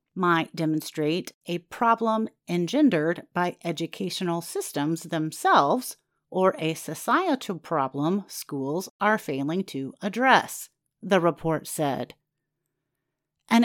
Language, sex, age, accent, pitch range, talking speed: English, female, 40-59, American, 160-245 Hz, 95 wpm